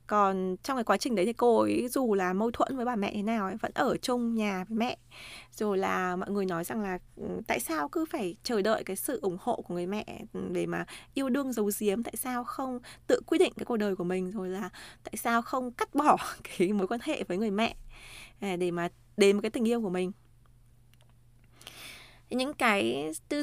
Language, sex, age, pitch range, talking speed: Vietnamese, female, 20-39, 185-240 Hz, 225 wpm